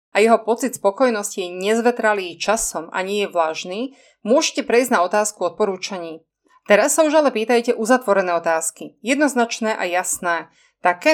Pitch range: 190-245 Hz